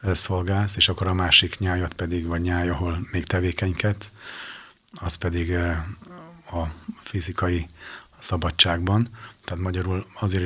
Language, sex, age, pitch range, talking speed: Hungarian, male, 30-49, 90-100 Hz, 110 wpm